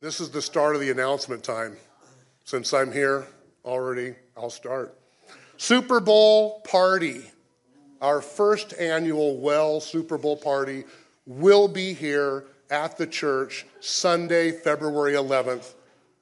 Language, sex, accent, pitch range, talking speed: English, male, American, 140-190 Hz, 120 wpm